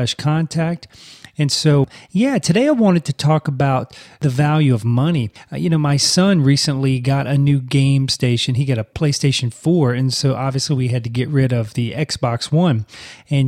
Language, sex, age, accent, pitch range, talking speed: English, male, 30-49, American, 125-160 Hz, 190 wpm